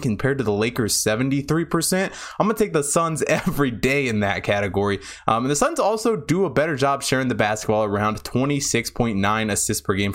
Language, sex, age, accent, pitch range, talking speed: English, male, 20-39, American, 105-145 Hz, 195 wpm